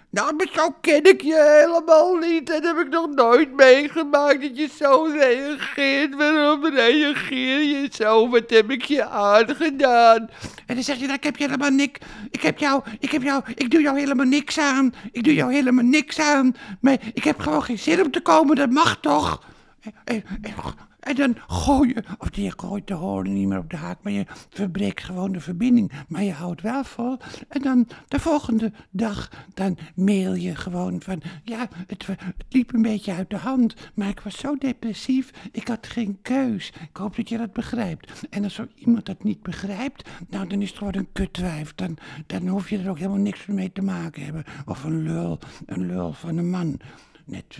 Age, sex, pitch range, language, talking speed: 60-79, male, 180-275 Hz, Dutch, 210 wpm